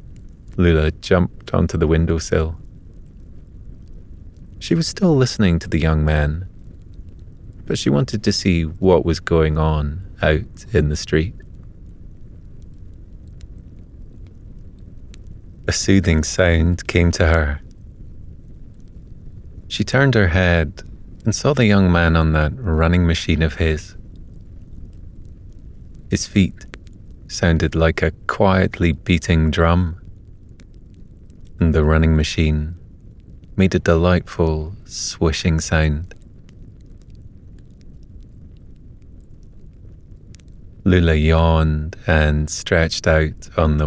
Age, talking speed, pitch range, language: 30-49, 95 wpm, 80-95 Hz, English